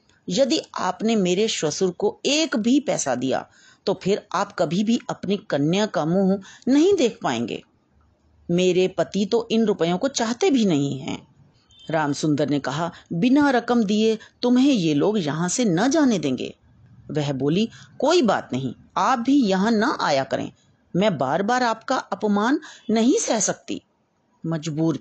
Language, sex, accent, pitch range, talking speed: Hindi, female, native, 150-230 Hz, 155 wpm